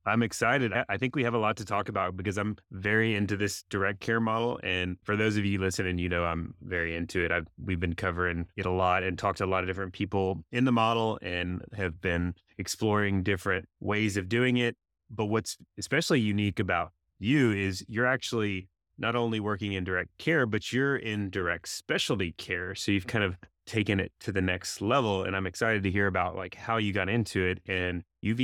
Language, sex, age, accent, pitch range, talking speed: English, male, 20-39, American, 90-110 Hz, 215 wpm